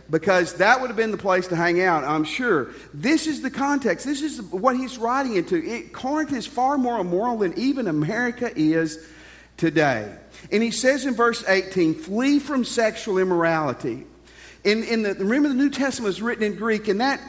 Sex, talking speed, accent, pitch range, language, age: male, 195 wpm, American, 160-250 Hz, English, 50-69